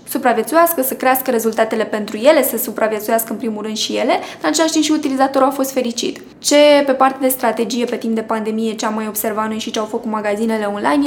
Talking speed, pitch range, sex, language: 220 wpm, 230-270 Hz, female, Romanian